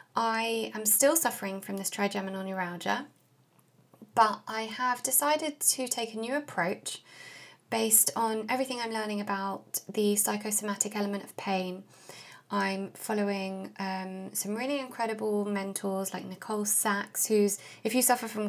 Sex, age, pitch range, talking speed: female, 20-39, 200-250 Hz, 140 wpm